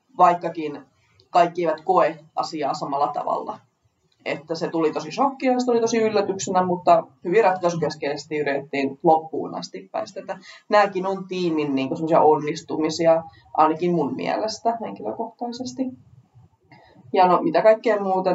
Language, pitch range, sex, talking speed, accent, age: Finnish, 155-185 Hz, female, 130 wpm, native, 20-39